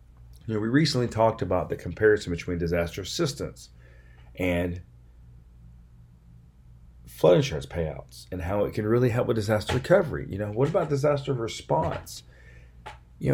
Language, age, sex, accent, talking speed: English, 40-59, male, American, 140 wpm